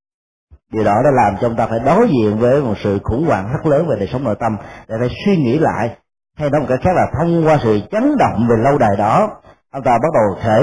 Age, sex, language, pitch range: 30-49, male, Vietnamese, 110-150 Hz